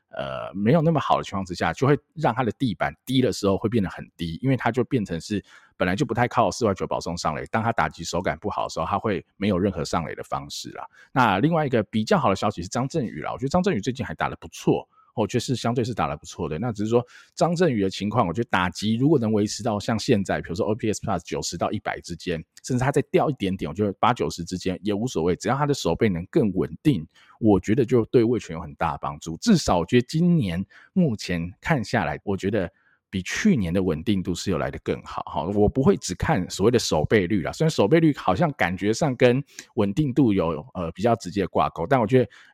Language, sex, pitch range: Chinese, male, 90-125 Hz